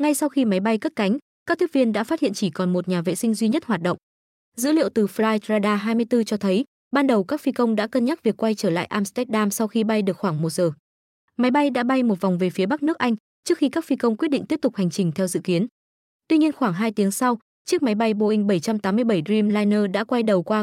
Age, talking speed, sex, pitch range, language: 20-39, 260 wpm, female, 195-250 Hz, Vietnamese